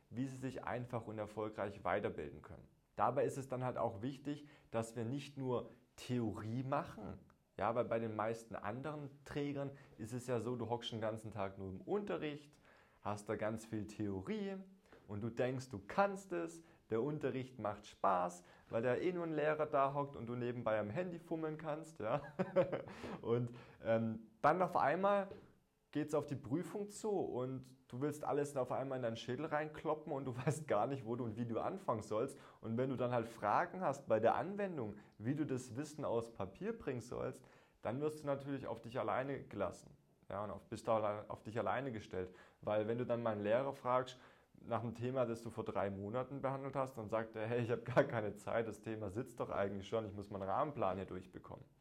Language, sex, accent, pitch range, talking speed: German, male, German, 110-145 Hz, 205 wpm